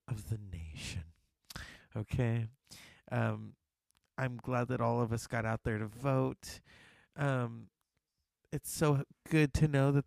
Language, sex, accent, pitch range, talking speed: English, male, American, 110-140 Hz, 135 wpm